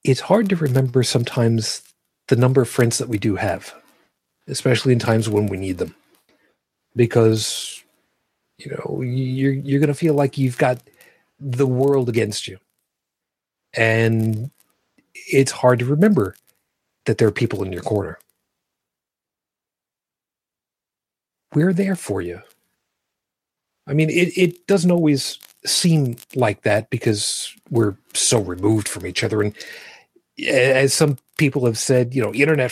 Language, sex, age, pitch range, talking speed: English, male, 40-59, 110-140 Hz, 140 wpm